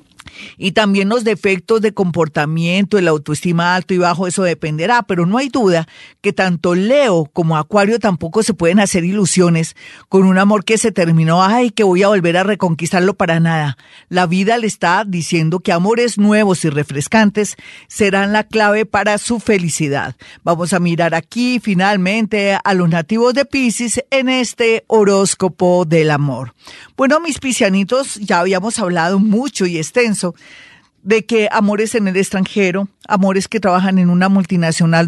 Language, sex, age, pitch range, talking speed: Spanish, female, 40-59, 170-210 Hz, 160 wpm